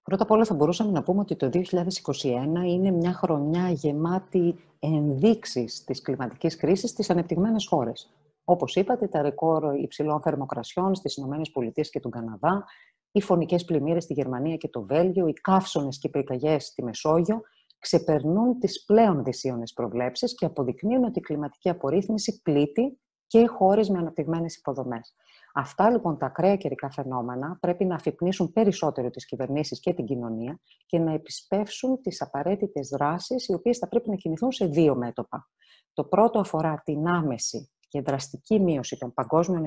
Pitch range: 140-190 Hz